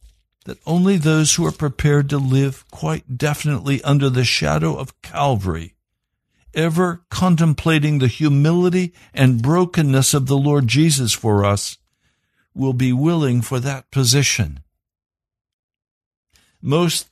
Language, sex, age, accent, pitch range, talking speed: English, male, 60-79, American, 110-145 Hz, 120 wpm